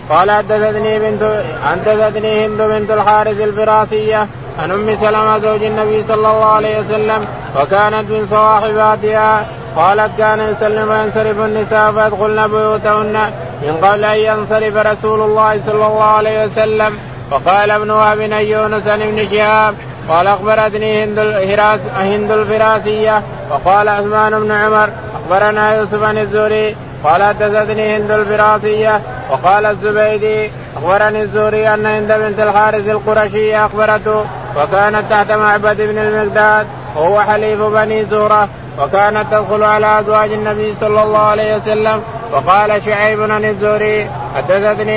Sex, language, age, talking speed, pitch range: male, Arabic, 20-39, 125 wpm, 210-215 Hz